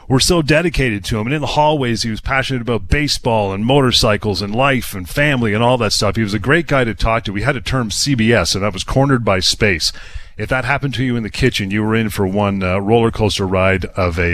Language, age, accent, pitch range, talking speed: English, 40-59, American, 95-120 Hz, 260 wpm